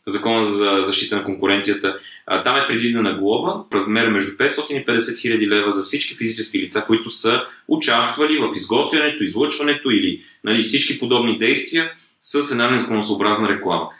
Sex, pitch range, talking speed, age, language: male, 105-130 Hz, 145 wpm, 20-39, Bulgarian